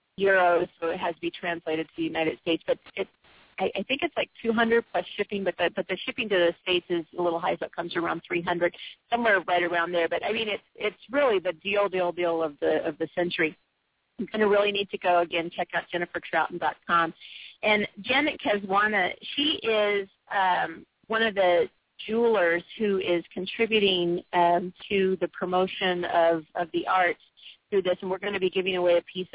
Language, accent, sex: English, American, female